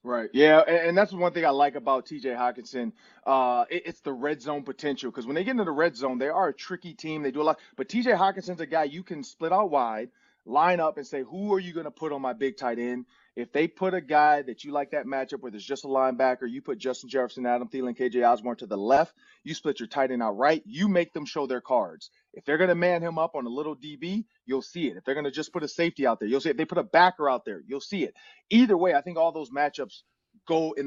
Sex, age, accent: male, 30-49, American